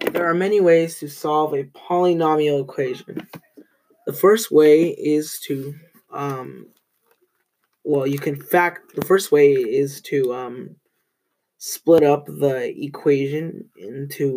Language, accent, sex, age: English, American, male, 10-29